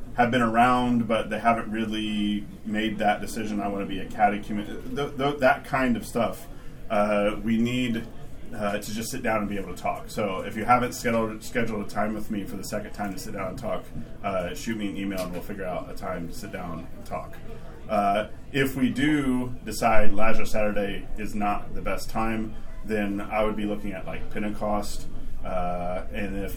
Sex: male